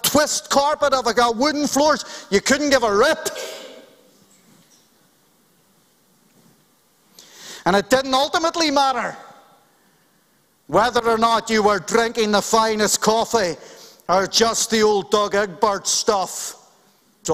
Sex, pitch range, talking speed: male, 205-265 Hz, 120 wpm